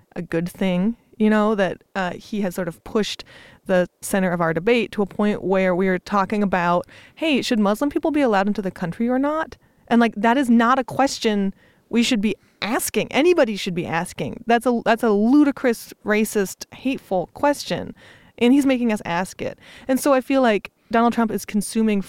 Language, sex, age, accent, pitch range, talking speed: English, female, 20-39, American, 185-235 Hz, 200 wpm